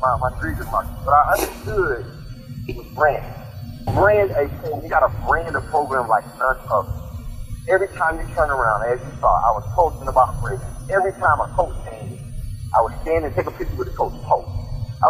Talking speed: 225 wpm